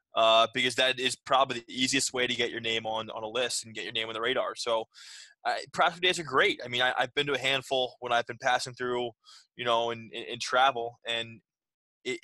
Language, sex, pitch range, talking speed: English, male, 115-130 Hz, 250 wpm